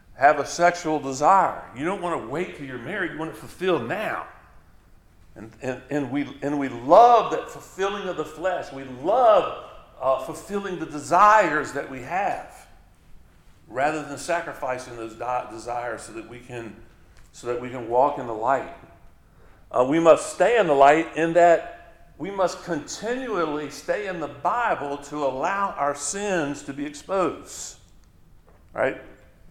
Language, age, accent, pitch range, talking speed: English, 50-69, American, 110-160 Hz, 160 wpm